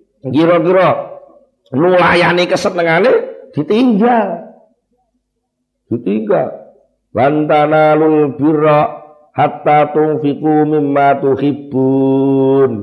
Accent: native